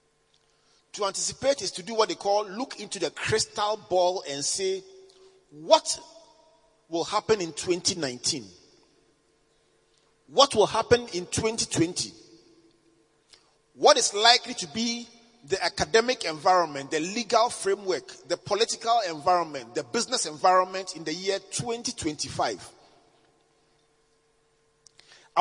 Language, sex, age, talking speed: English, male, 40-59, 110 wpm